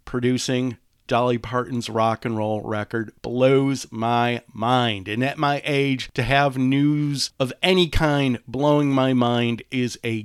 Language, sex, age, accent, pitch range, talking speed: English, male, 40-59, American, 120-145 Hz, 145 wpm